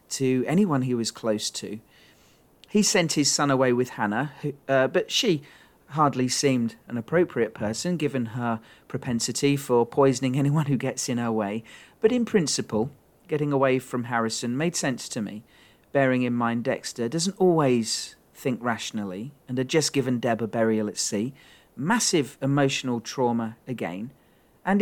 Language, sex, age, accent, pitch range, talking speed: English, male, 40-59, British, 120-145 Hz, 155 wpm